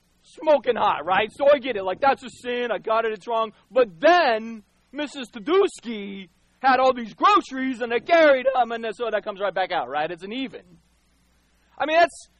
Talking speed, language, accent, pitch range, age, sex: 205 wpm, English, American, 175-270 Hz, 40-59, male